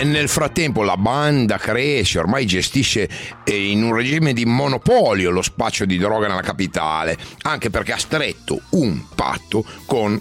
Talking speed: 155 wpm